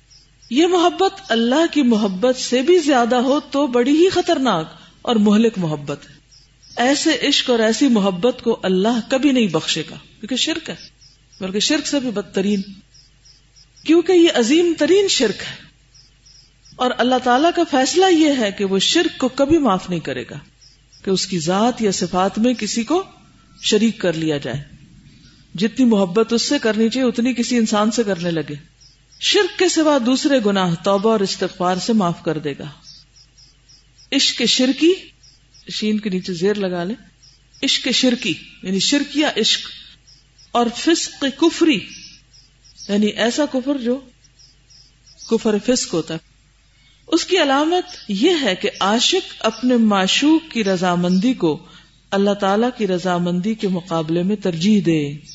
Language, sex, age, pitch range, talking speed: Urdu, female, 50-69, 155-255 Hz, 155 wpm